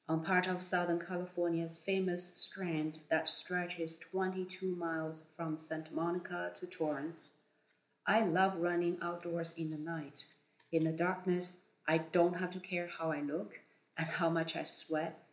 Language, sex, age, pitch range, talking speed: English, female, 40-59, 160-180 Hz, 155 wpm